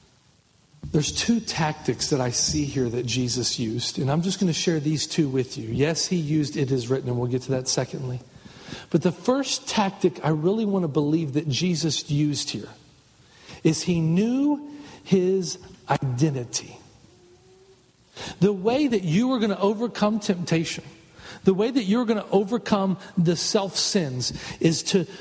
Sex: male